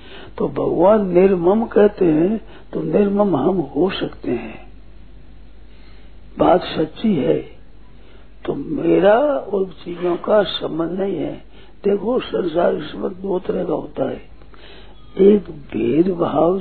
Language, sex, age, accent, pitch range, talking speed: Hindi, male, 60-79, native, 180-235 Hz, 110 wpm